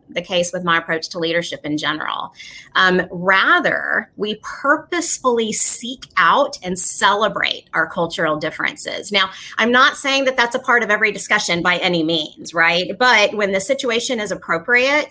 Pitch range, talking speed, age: 185-255 Hz, 165 wpm, 30-49